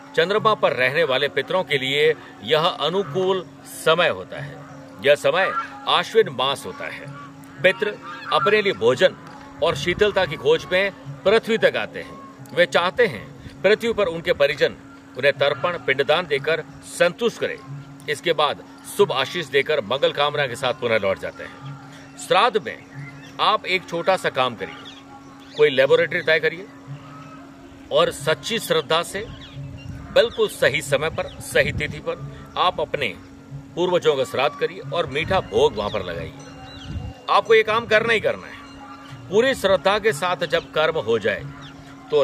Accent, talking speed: native, 155 wpm